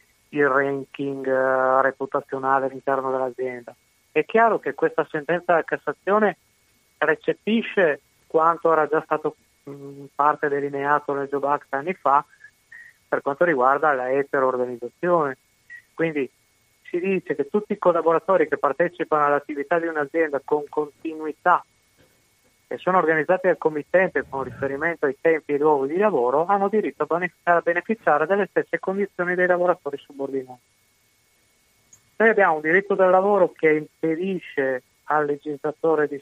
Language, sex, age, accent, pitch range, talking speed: Italian, male, 30-49, native, 140-170 Hz, 130 wpm